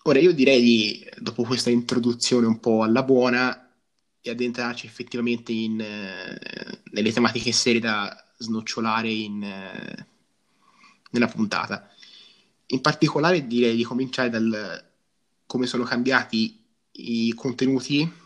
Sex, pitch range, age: male, 115-125 Hz, 20-39